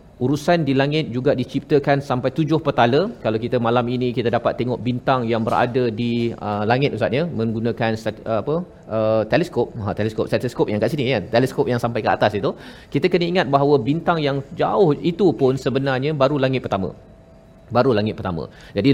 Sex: male